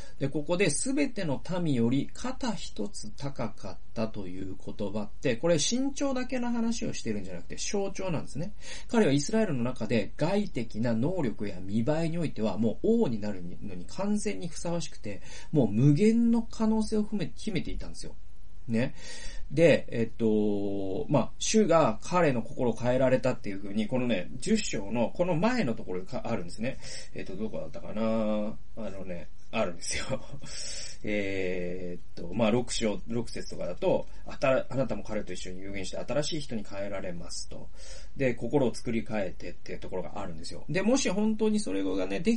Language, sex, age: Japanese, male, 40-59